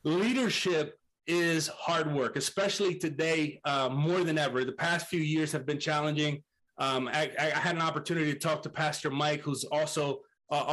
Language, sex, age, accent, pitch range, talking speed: English, male, 30-49, American, 150-170 Hz, 175 wpm